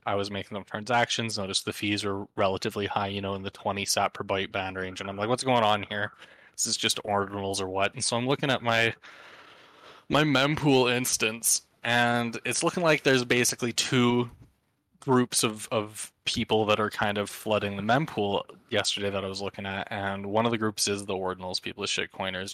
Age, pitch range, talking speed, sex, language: 20-39, 100-120 Hz, 210 wpm, male, English